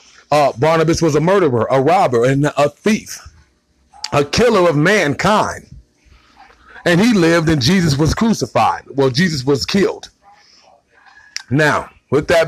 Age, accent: 40-59, American